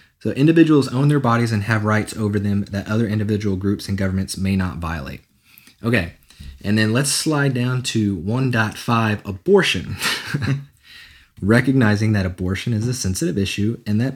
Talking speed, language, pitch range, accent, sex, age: 160 wpm, English, 95-115 Hz, American, male, 30-49